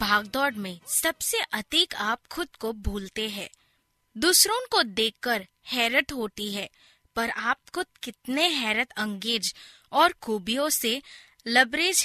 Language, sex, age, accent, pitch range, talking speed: Hindi, female, 20-39, native, 215-320 Hz, 125 wpm